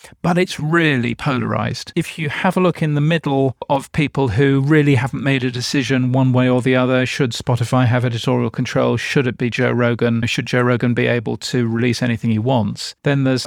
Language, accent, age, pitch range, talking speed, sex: English, British, 40-59, 120-150 Hz, 210 wpm, male